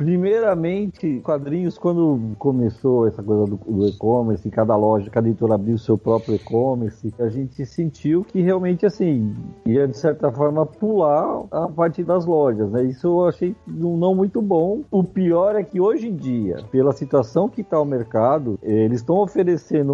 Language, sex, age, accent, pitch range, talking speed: Portuguese, male, 50-69, Brazilian, 125-180 Hz, 170 wpm